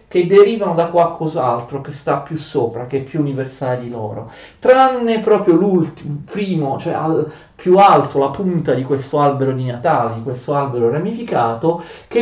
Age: 40-59